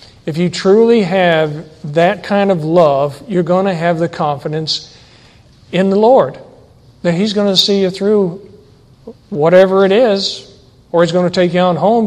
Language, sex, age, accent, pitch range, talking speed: English, male, 50-69, American, 145-185 Hz, 175 wpm